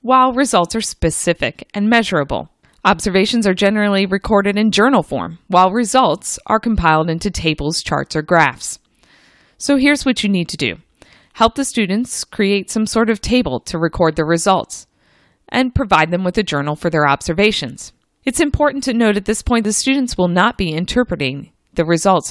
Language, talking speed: English, 175 wpm